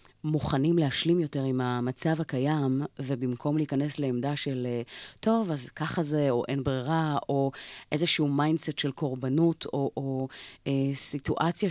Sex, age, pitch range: female, 30-49, 125-155 Hz